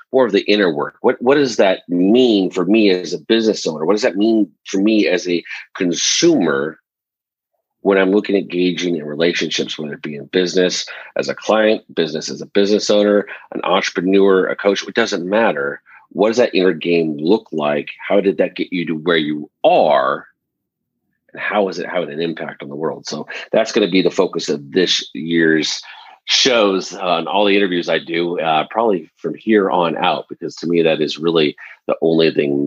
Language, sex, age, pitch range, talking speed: English, male, 40-59, 80-100 Hz, 205 wpm